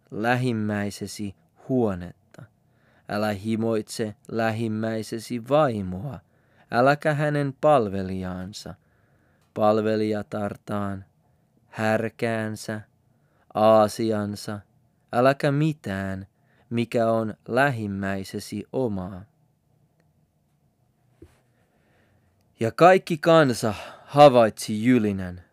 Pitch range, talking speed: 100-125 Hz, 55 wpm